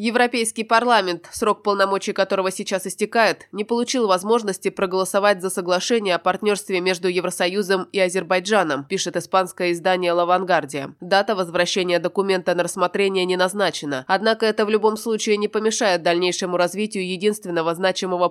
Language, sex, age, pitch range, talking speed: Russian, female, 20-39, 175-200 Hz, 135 wpm